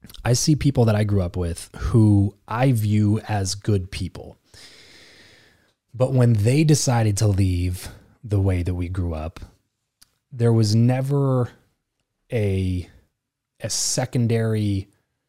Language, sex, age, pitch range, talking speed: English, male, 20-39, 100-115 Hz, 125 wpm